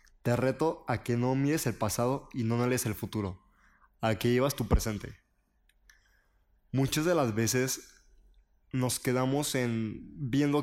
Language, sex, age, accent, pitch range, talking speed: Spanish, male, 20-39, Mexican, 110-135 Hz, 150 wpm